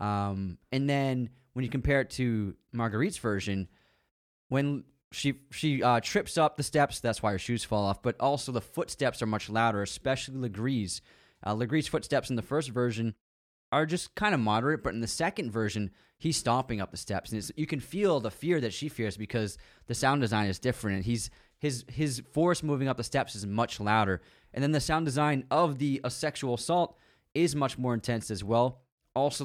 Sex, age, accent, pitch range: male, 20-39, American, 110-140 Hz